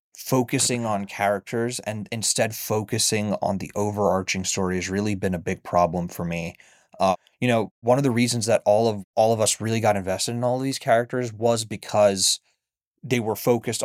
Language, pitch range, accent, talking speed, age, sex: English, 95-120 Hz, American, 185 wpm, 20-39, male